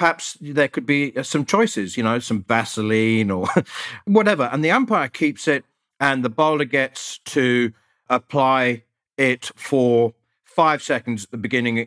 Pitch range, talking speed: 110-145 Hz, 150 wpm